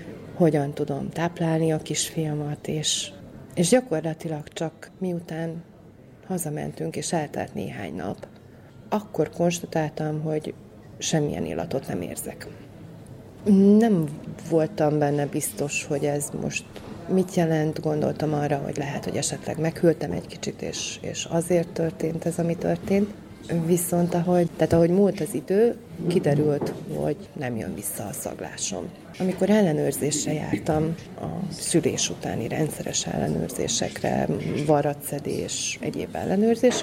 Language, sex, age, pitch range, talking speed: Hungarian, female, 30-49, 150-180 Hz, 115 wpm